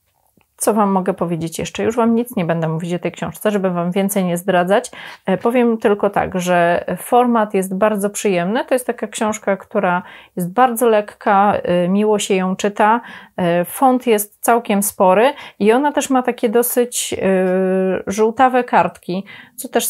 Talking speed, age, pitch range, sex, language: 160 wpm, 30-49, 175-210 Hz, female, Polish